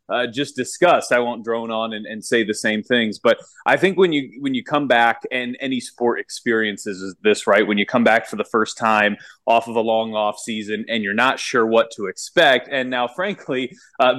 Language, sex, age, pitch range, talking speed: English, male, 20-39, 115-150 Hz, 230 wpm